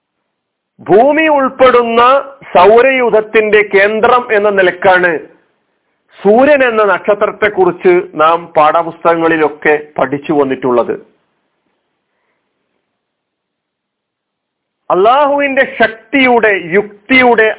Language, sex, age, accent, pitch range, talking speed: Malayalam, male, 50-69, native, 160-245 Hz, 60 wpm